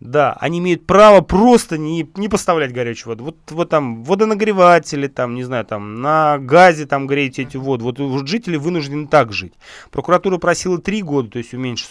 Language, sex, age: Russian, male, 30-49